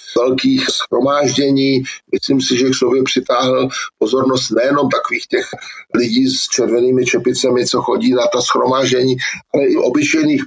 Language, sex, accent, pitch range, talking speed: Czech, male, native, 130-140 Hz, 140 wpm